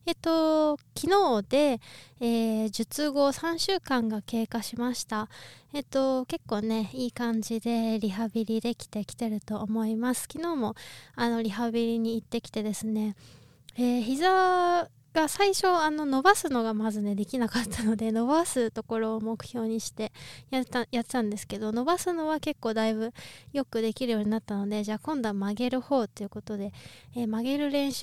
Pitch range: 215-280 Hz